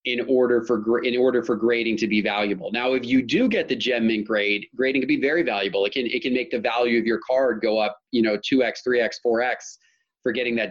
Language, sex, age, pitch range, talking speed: English, male, 30-49, 115-140 Hz, 245 wpm